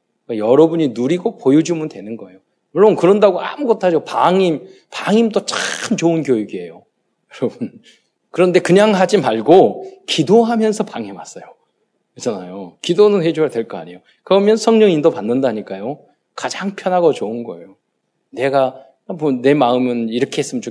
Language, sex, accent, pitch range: Korean, male, native, 130-200 Hz